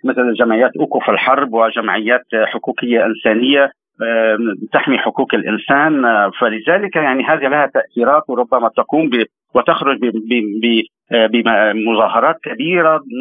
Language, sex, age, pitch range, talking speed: Arabic, male, 50-69, 115-160 Hz, 95 wpm